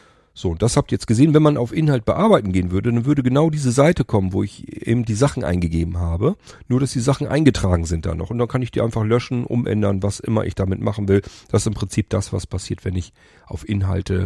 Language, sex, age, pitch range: German, male, 40-59, 95-120 Hz